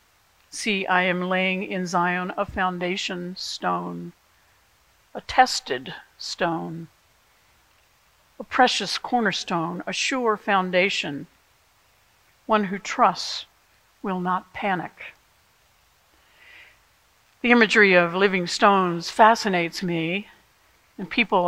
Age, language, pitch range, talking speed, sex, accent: 60-79, English, 175-210 Hz, 90 wpm, female, American